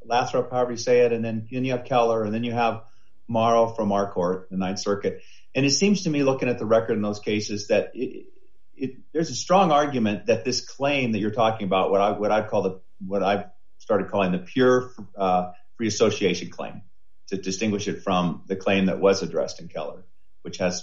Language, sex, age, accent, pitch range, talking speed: English, male, 40-59, American, 95-125 Hz, 220 wpm